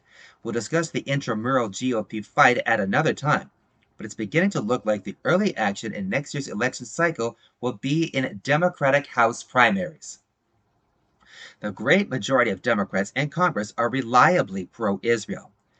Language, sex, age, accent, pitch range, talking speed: English, male, 30-49, American, 115-160 Hz, 150 wpm